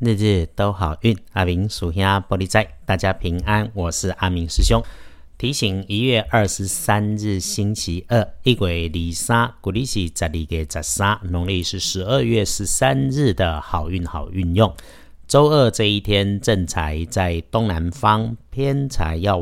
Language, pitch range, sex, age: Chinese, 85-110 Hz, male, 50-69